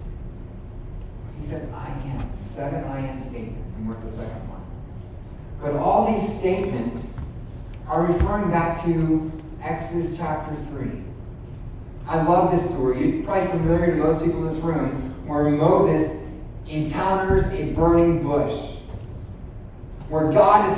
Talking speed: 135 wpm